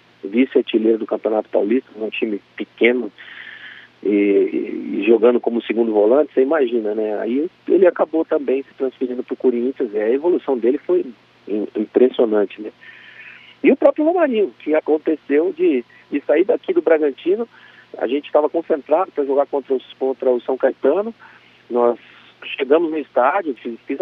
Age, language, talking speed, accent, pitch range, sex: 40-59, Portuguese, 155 wpm, Brazilian, 115-165 Hz, male